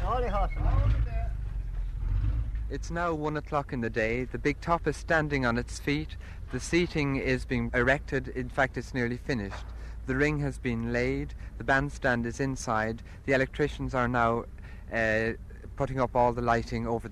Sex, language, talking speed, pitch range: male, English, 160 wpm, 105-130 Hz